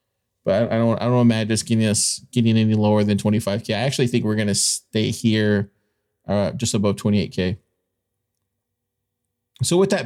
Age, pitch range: 20-39, 110-130 Hz